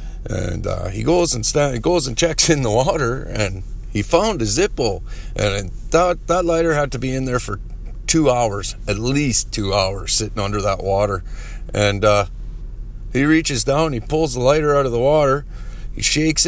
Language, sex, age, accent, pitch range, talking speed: English, male, 40-59, American, 105-130 Hz, 190 wpm